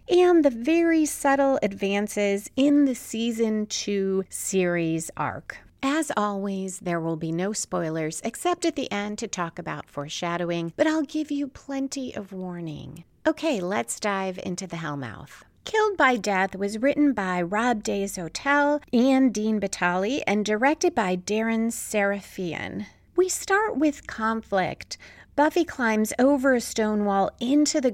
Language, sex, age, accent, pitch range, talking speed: English, female, 40-59, American, 195-275 Hz, 145 wpm